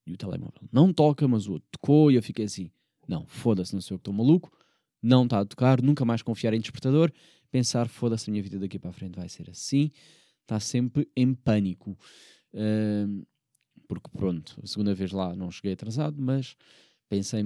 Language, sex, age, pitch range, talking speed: Portuguese, male, 20-39, 105-130 Hz, 200 wpm